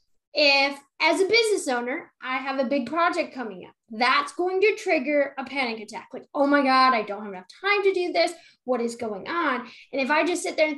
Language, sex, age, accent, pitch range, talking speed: English, female, 10-29, American, 250-315 Hz, 235 wpm